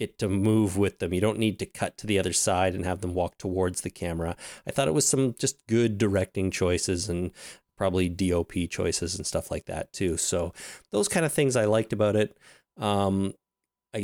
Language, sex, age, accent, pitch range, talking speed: English, male, 30-49, American, 95-115 Hz, 215 wpm